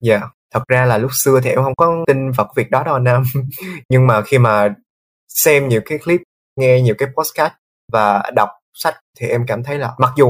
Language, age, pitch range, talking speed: Vietnamese, 20-39, 110-140 Hz, 240 wpm